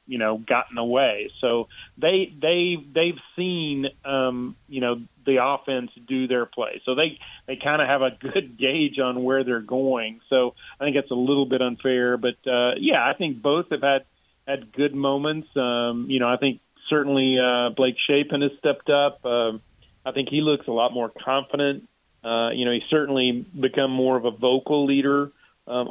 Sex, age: male, 40-59